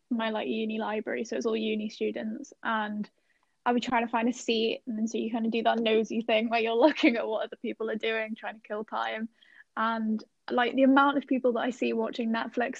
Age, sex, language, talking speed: 10-29, female, English, 240 wpm